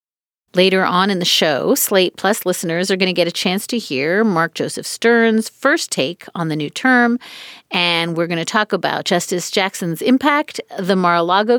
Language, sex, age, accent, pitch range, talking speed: English, female, 40-59, American, 175-230 Hz, 185 wpm